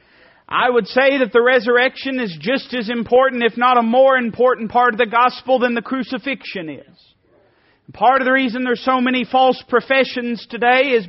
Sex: male